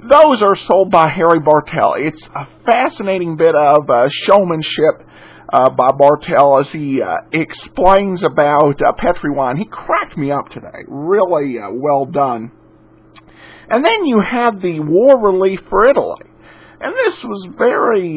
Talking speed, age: 150 wpm, 50-69